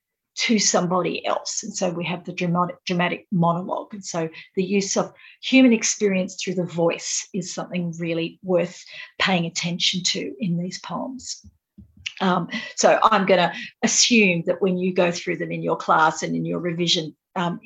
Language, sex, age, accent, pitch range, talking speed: English, female, 50-69, Australian, 175-220 Hz, 175 wpm